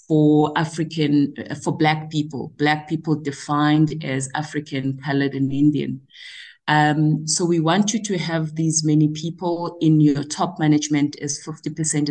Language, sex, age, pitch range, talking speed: English, female, 30-49, 150-185 Hz, 145 wpm